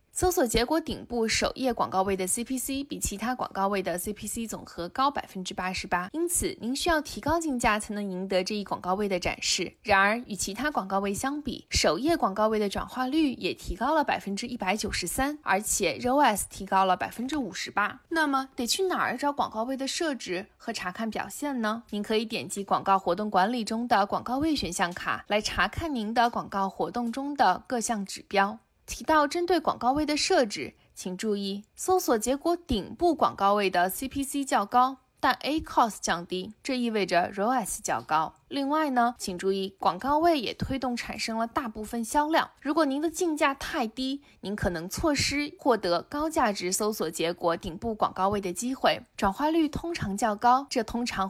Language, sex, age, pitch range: Chinese, female, 20-39, 195-275 Hz